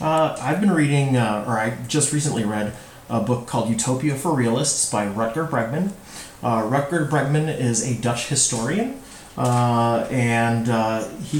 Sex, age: male, 30-49